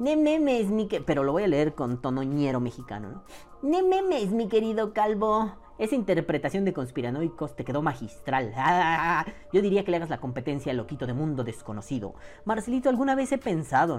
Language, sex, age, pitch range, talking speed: Spanish, female, 30-49, 130-185 Hz, 175 wpm